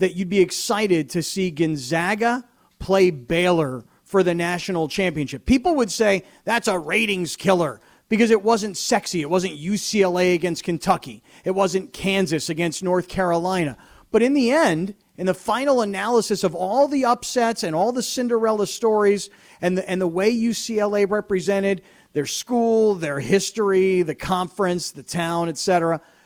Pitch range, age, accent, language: 170-210 Hz, 40-59, American, English